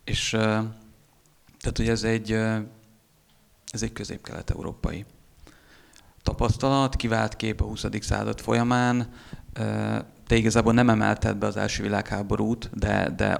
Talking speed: 105 wpm